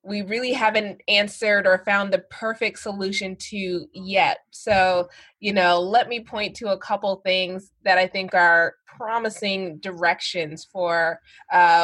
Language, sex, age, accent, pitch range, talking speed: English, female, 20-39, American, 180-215 Hz, 145 wpm